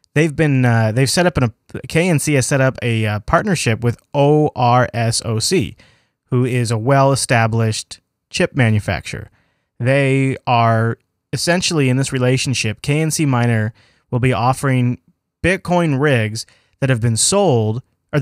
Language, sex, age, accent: English, male, 20-39, American